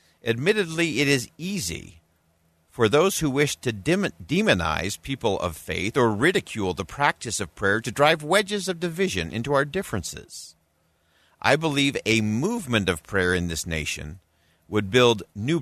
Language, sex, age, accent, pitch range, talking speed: English, male, 50-69, American, 85-115 Hz, 150 wpm